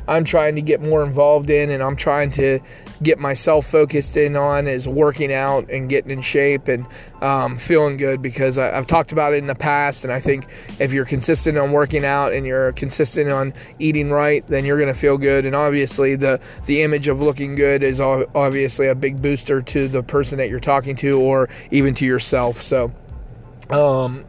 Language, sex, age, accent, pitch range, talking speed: English, male, 20-39, American, 135-155 Hz, 205 wpm